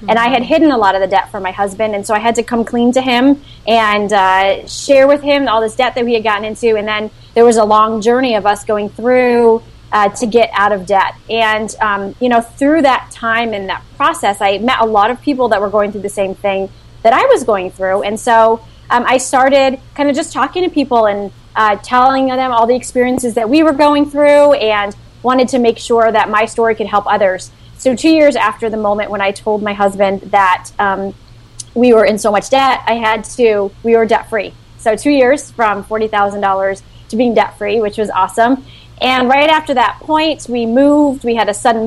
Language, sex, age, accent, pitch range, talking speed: English, female, 20-39, American, 205-260 Hz, 230 wpm